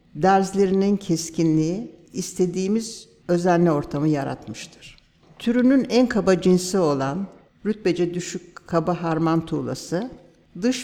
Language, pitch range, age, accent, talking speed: English, 155-205 Hz, 60-79, Turkish, 95 wpm